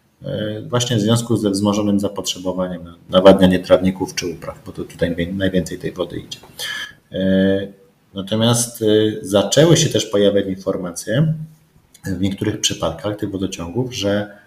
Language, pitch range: Polish, 95-115 Hz